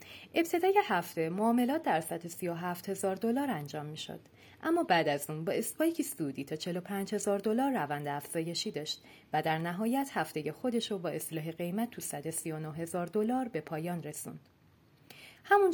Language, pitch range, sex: Persian, 150-225 Hz, female